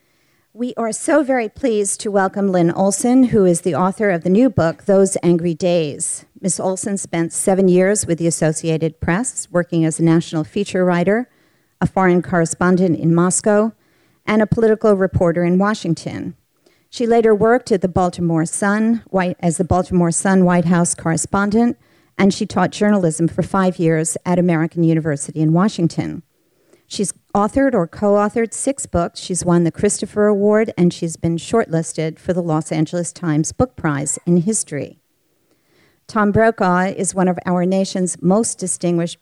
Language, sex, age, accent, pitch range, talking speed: English, female, 50-69, American, 165-200 Hz, 160 wpm